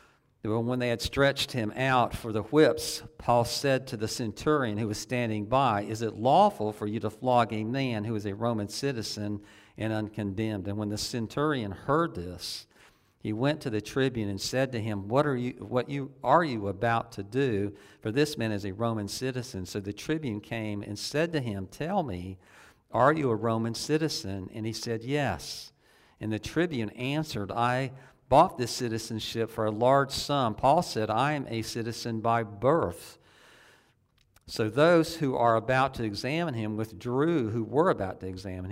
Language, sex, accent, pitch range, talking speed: English, male, American, 105-125 Hz, 185 wpm